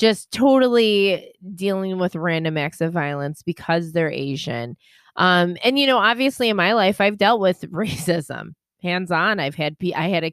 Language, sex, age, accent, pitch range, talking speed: English, female, 20-39, American, 170-215 Hz, 175 wpm